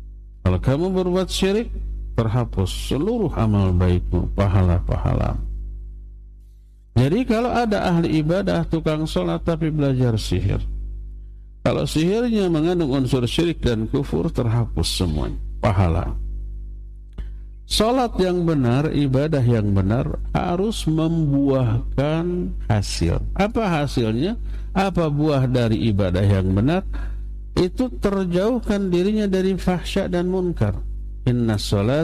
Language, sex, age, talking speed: Indonesian, male, 50-69, 100 wpm